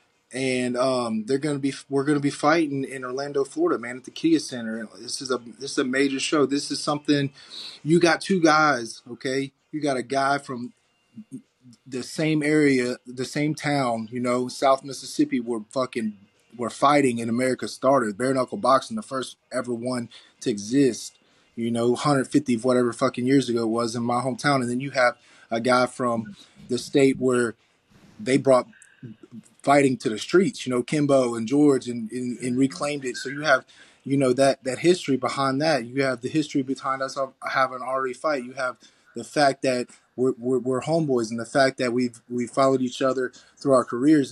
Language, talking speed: English, 195 wpm